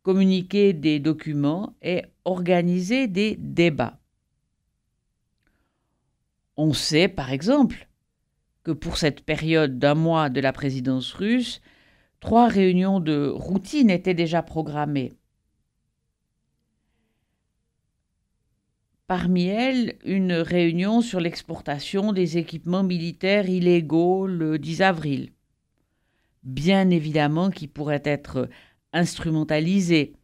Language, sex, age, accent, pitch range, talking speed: French, female, 50-69, French, 140-180 Hz, 95 wpm